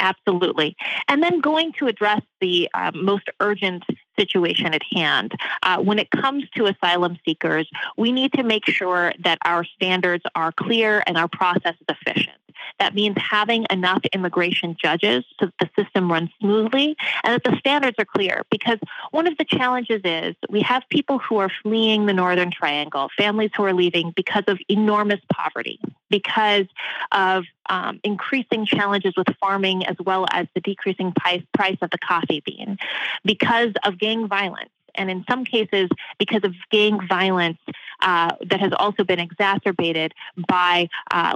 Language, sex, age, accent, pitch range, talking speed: English, female, 30-49, American, 180-220 Hz, 165 wpm